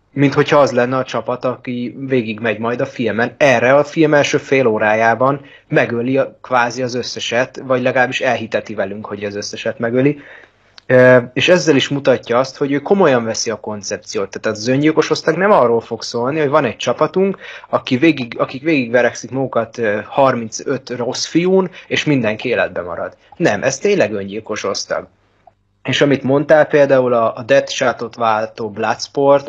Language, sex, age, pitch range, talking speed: Hungarian, male, 30-49, 115-140 Hz, 160 wpm